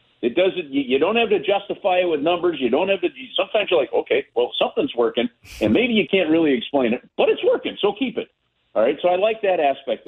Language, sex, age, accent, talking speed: English, male, 50-69, American, 245 wpm